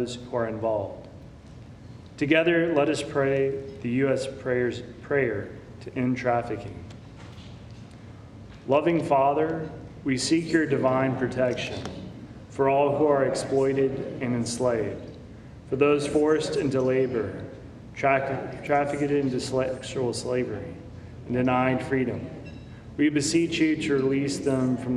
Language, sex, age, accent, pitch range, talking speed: English, male, 30-49, American, 120-140 Hz, 120 wpm